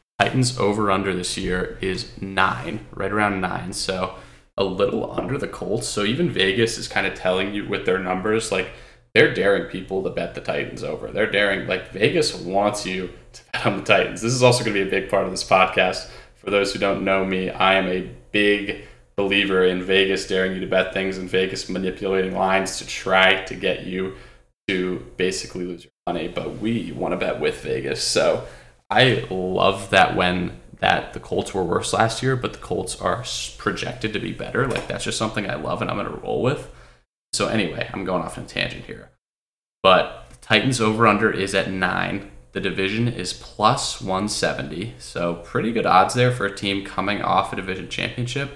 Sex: male